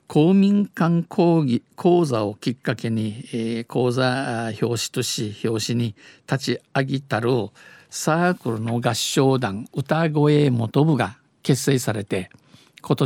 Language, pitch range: Japanese, 120-150 Hz